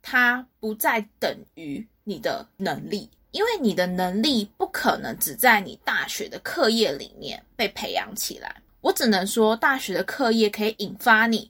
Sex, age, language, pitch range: female, 20-39, Chinese, 210-275 Hz